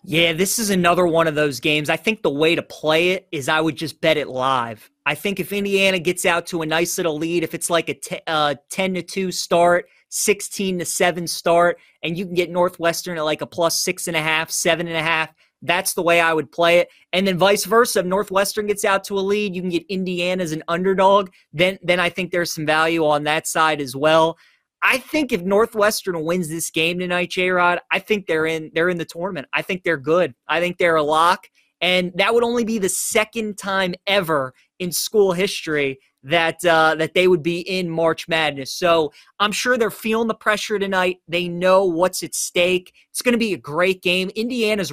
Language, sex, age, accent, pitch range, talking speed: English, male, 30-49, American, 160-190 Hz, 230 wpm